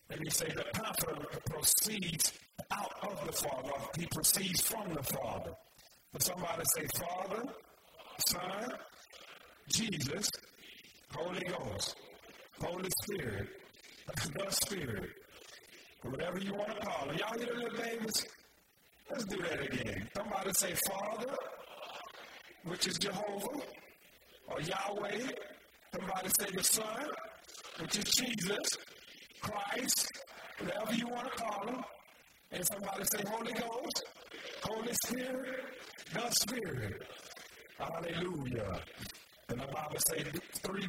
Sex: male